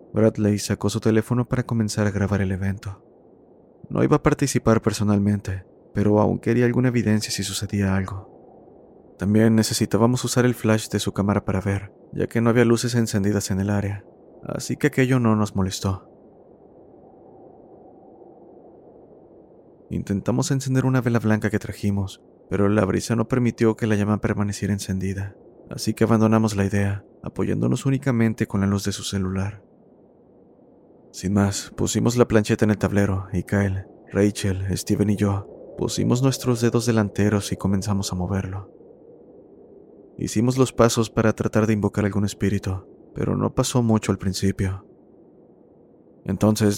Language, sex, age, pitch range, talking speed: Spanish, male, 30-49, 100-115 Hz, 150 wpm